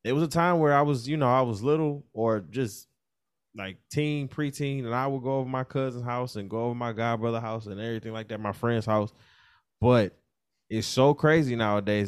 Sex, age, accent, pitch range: male, 20-39, American, 95-120 Hz